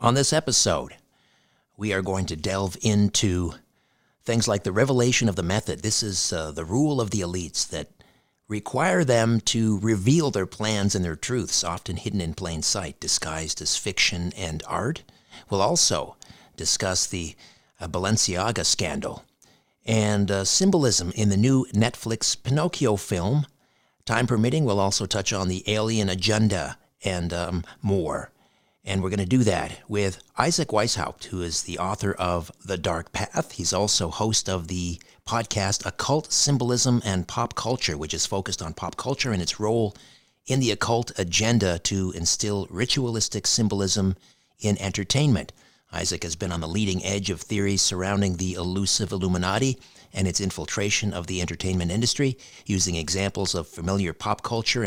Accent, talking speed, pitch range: American, 160 wpm, 90-115 Hz